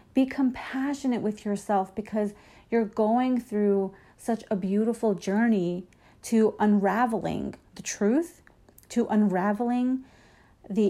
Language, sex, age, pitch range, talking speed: English, female, 40-59, 190-245 Hz, 105 wpm